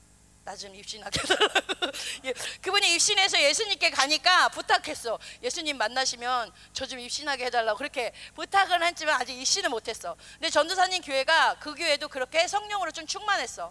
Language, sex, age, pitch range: Korean, female, 30-49, 255-355 Hz